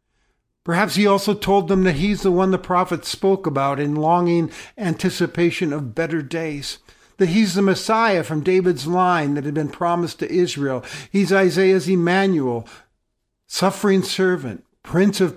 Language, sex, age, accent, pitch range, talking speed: English, male, 50-69, American, 160-205 Hz, 150 wpm